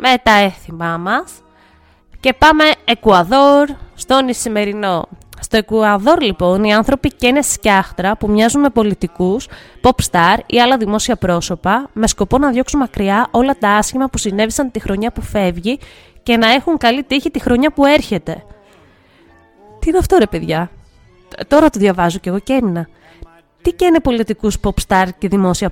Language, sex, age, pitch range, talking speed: Greek, female, 20-39, 200-270 Hz, 145 wpm